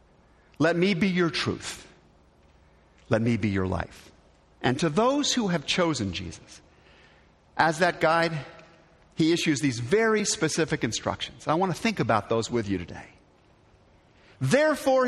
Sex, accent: male, American